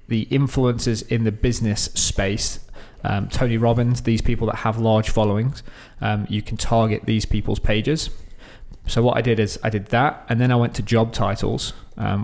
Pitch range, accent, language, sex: 100-115 Hz, British, English, male